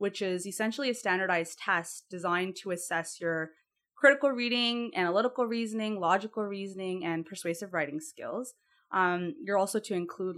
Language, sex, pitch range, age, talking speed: English, female, 170-235 Hz, 20-39, 145 wpm